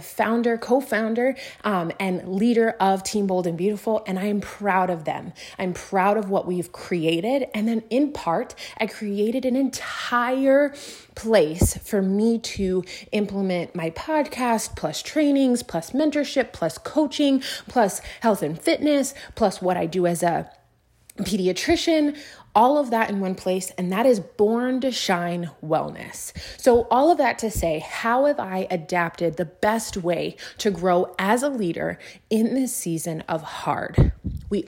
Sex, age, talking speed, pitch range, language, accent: female, 20-39, 155 wpm, 180-230 Hz, English, American